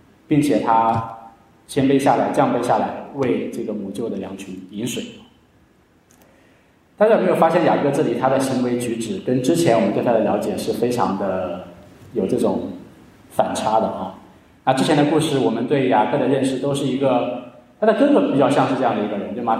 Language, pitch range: Chinese, 115-145 Hz